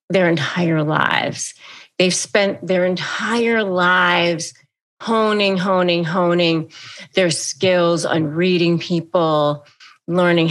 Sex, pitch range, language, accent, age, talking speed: female, 160-200 Hz, English, American, 40-59, 95 wpm